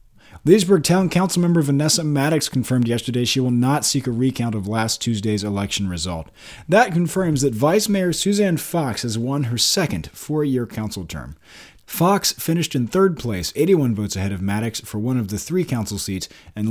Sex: male